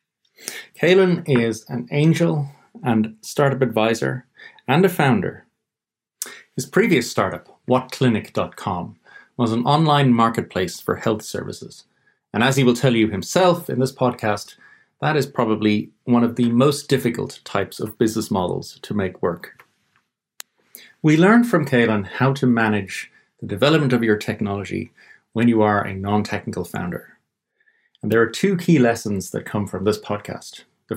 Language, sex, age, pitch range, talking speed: English, male, 30-49, 110-145 Hz, 145 wpm